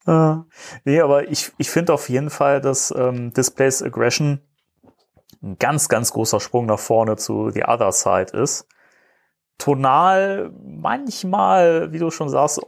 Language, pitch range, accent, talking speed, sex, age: German, 125-160 Hz, German, 145 wpm, male, 30-49